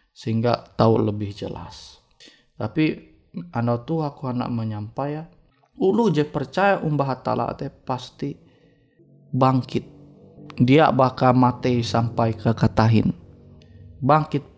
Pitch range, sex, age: 125-170 Hz, male, 20-39